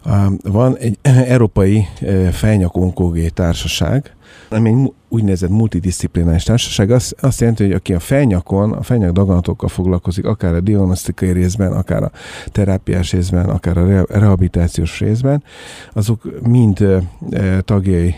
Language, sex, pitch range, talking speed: Hungarian, male, 90-105 Hz, 115 wpm